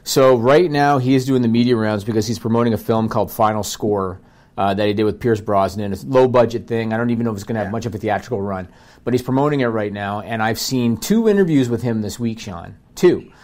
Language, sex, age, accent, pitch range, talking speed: English, male, 40-59, American, 110-130 Hz, 265 wpm